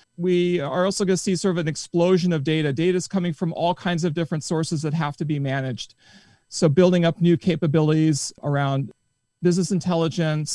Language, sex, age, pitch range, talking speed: English, male, 40-59, 150-180 Hz, 195 wpm